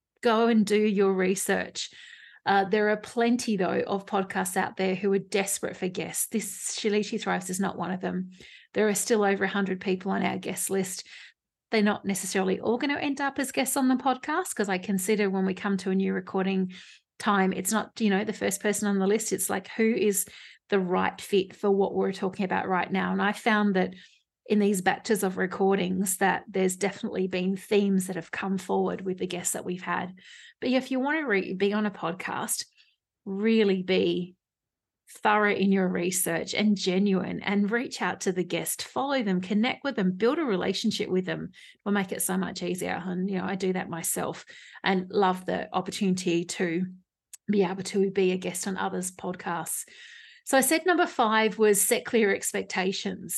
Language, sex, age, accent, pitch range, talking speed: English, female, 30-49, Australian, 185-215 Hz, 200 wpm